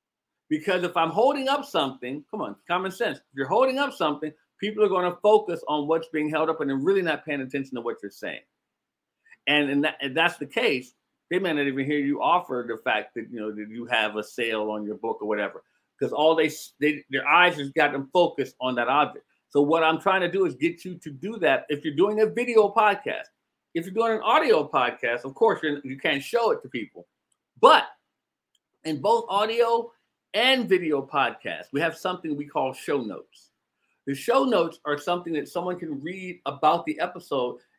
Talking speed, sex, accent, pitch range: 215 wpm, male, American, 145-205 Hz